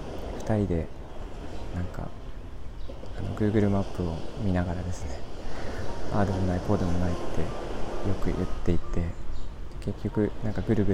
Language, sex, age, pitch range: Japanese, male, 20-39, 85-105 Hz